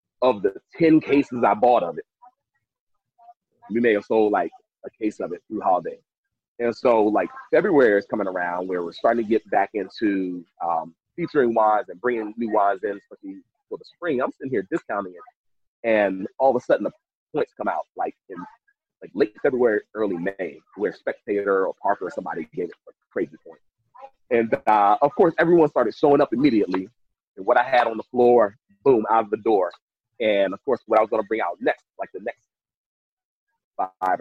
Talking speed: 200 wpm